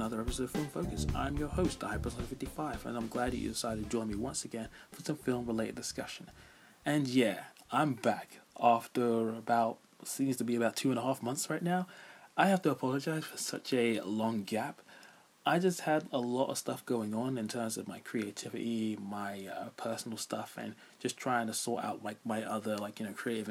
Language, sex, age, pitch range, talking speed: English, male, 20-39, 110-135 Hz, 210 wpm